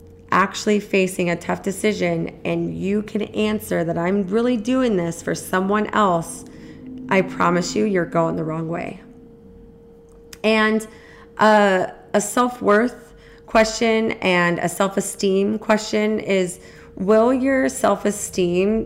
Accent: American